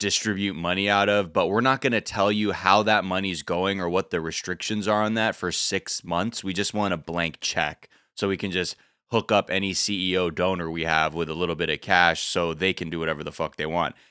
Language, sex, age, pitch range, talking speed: English, male, 20-39, 85-105 Hz, 245 wpm